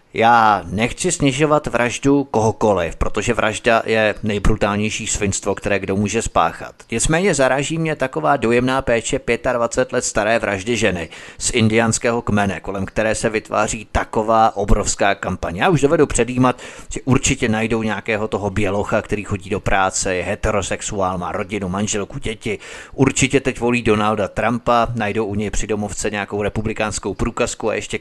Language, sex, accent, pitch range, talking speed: Czech, male, native, 100-120 Hz, 150 wpm